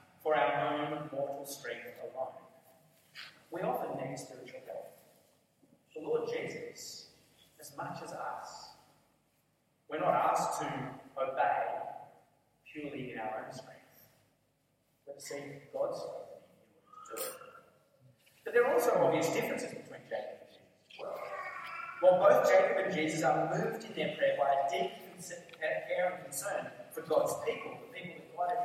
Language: English